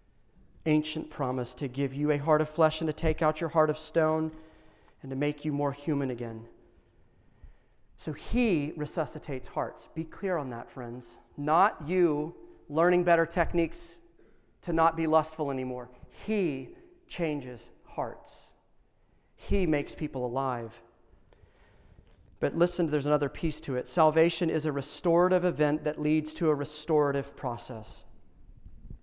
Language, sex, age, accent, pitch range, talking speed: English, male, 40-59, American, 145-175 Hz, 140 wpm